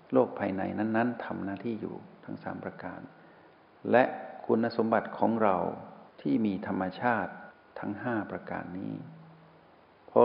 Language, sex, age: Thai, male, 60-79